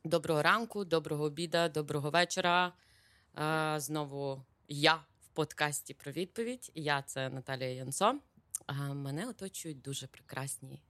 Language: Ukrainian